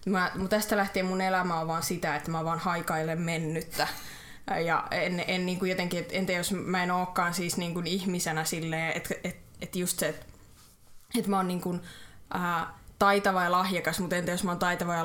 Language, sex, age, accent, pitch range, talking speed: Finnish, female, 20-39, native, 175-205 Hz, 195 wpm